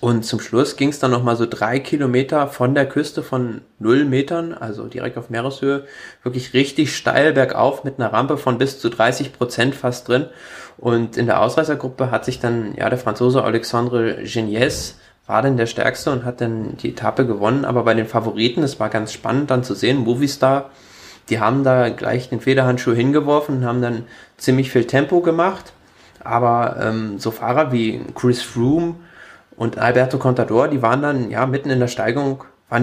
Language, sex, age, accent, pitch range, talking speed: German, male, 20-39, German, 115-135 Hz, 185 wpm